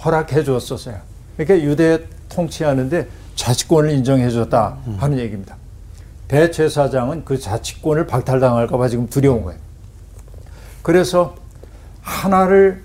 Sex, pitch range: male, 105-155 Hz